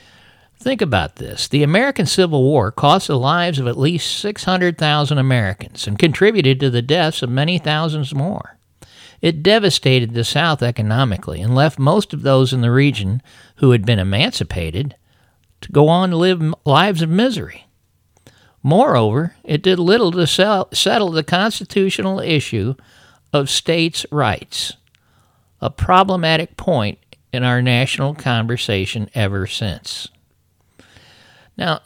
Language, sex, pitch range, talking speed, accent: English, male, 110-165 Hz, 135 wpm, American